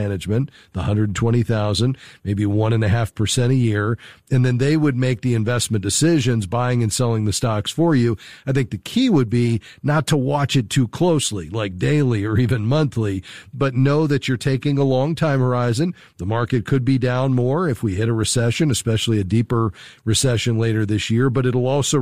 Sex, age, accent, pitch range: male, 50-69, American, 110-135 Hz